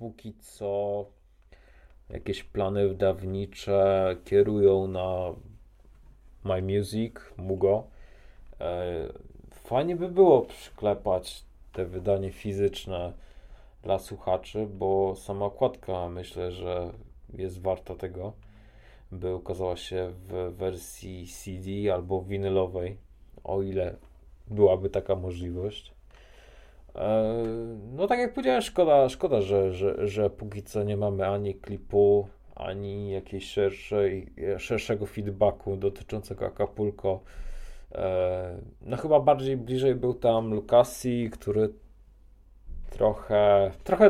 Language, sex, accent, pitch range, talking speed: Polish, male, native, 95-105 Hz, 95 wpm